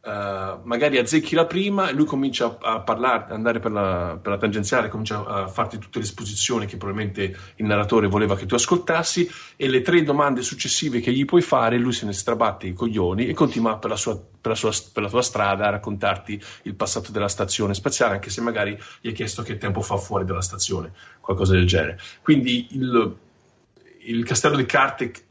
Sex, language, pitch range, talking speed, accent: male, Italian, 95-120 Hz, 205 wpm, native